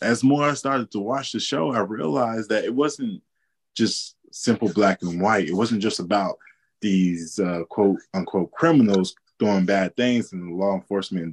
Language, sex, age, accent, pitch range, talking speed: English, male, 20-39, American, 90-120 Hz, 180 wpm